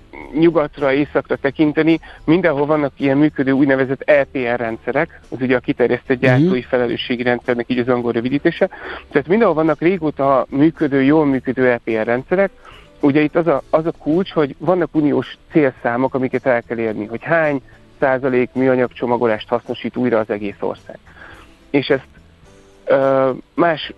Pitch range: 125-155 Hz